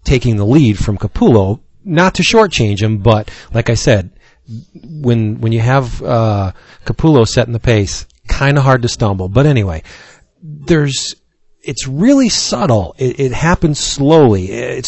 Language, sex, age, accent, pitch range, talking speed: English, male, 40-59, American, 110-135 Hz, 150 wpm